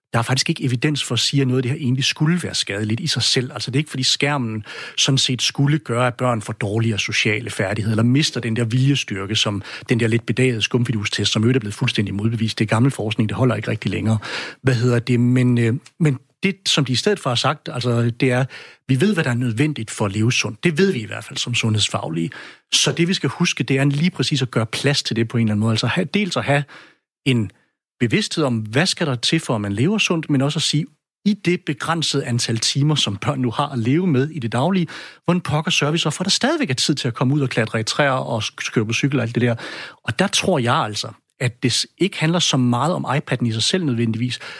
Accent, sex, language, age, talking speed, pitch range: native, male, Danish, 60-79, 260 wpm, 120-150 Hz